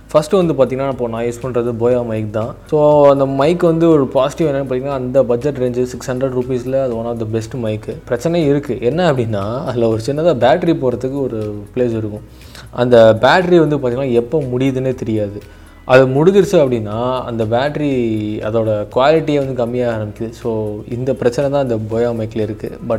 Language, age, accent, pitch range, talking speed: Tamil, 20-39, native, 115-140 Hz, 170 wpm